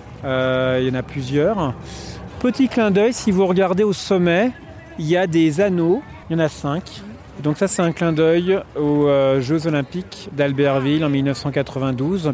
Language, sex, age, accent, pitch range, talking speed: French, male, 40-59, French, 140-170 Hz, 175 wpm